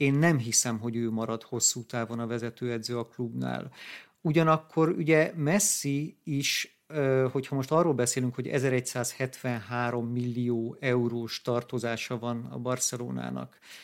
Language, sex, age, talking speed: Hungarian, male, 50-69, 120 wpm